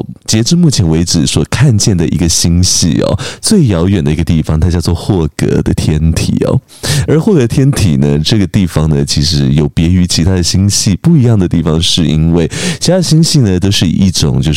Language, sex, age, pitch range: Chinese, male, 20-39, 80-110 Hz